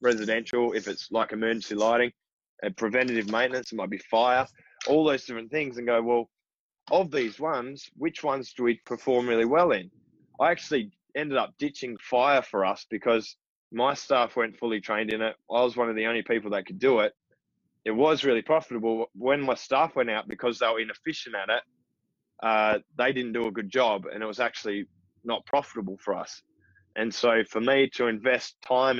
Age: 20-39